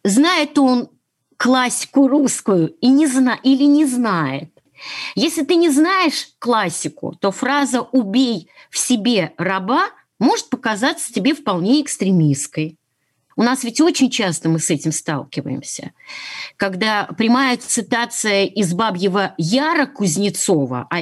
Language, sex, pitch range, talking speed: Russian, female, 185-270 Hz, 115 wpm